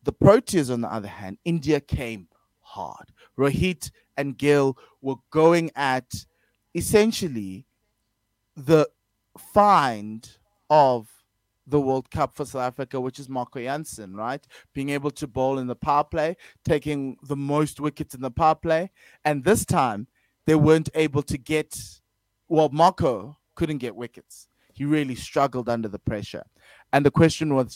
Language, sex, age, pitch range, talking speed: English, male, 20-39, 125-155 Hz, 150 wpm